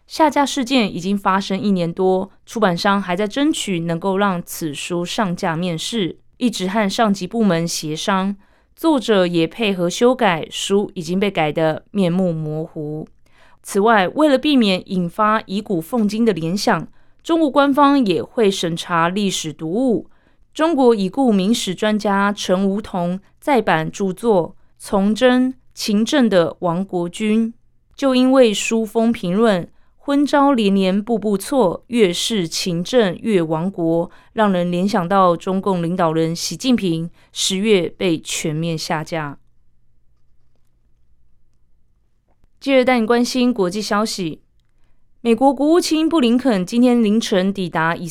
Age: 20-39